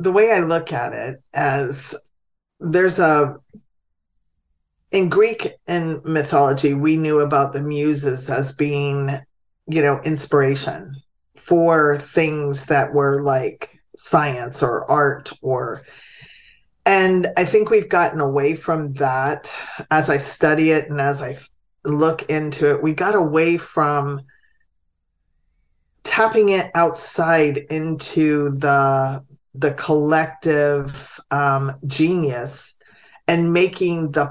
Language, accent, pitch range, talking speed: English, American, 140-175 Hz, 115 wpm